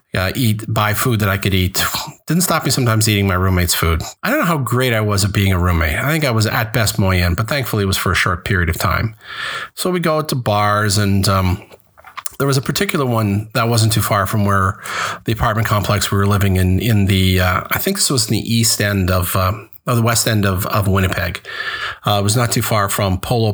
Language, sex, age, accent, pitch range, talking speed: English, male, 40-59, American, 95-115 Hz, 245 wpm